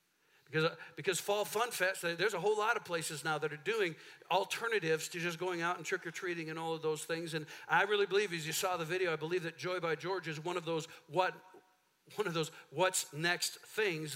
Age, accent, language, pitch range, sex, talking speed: 50-69, American, English, 165-205 Hz, male, 235 wpm